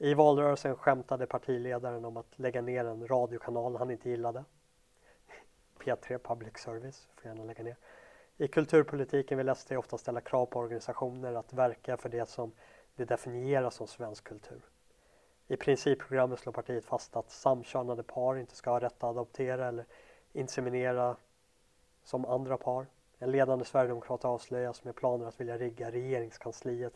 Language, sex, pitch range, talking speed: Swedish, male, 120-135 Hz, 155 wpm